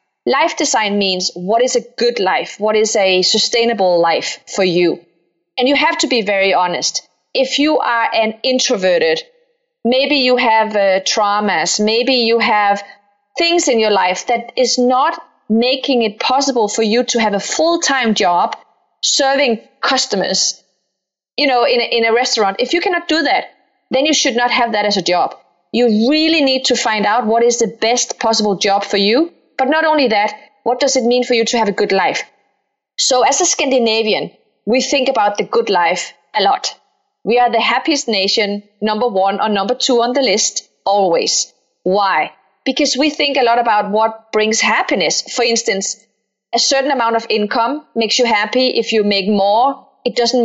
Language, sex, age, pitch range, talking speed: English, female, 30-49, 205-265 Hz, 185 wpm